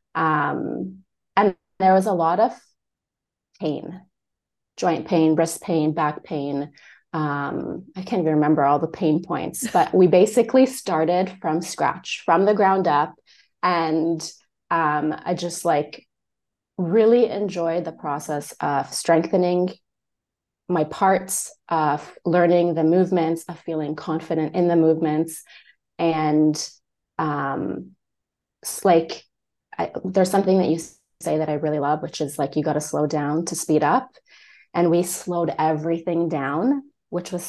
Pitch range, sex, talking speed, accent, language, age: 155-185 Hz, female, 140 wpm, American, English, 30-49